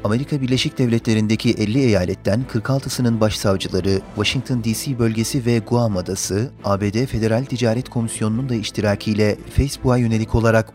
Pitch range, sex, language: 110-130 Hz, male, Turkish